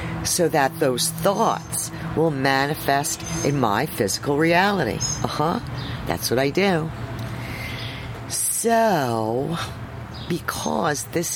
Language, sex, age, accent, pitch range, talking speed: English, female, 50-69, American, 115-155 Hz, 100 wpm